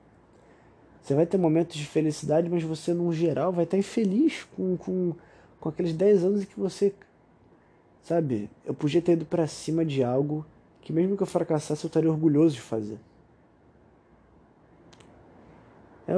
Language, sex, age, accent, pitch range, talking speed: Portuguese, male, 20-39, Brazilian, 120-165 Hz, 150 wpm